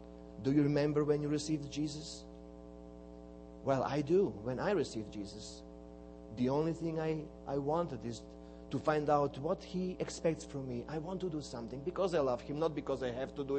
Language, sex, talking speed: English, male, 195 wpm